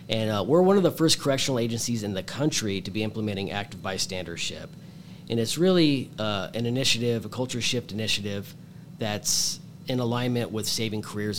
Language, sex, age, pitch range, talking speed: English, male, 40-59, 105-135 Hz, 175 wpm